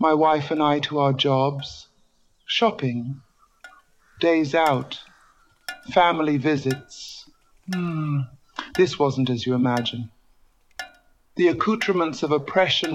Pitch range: 140-175 Hz